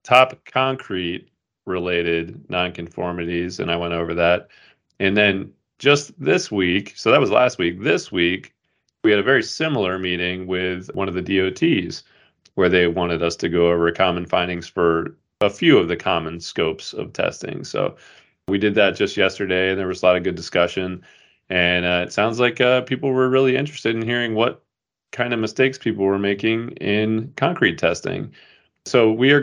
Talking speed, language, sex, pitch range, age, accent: 180 wpm, English, male, 85-115 Hz, 30-49, American